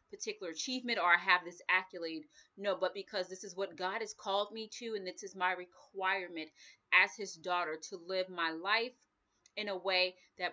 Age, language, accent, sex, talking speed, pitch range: 30-49, English, American, female, 195 wpm, 185-250 Hz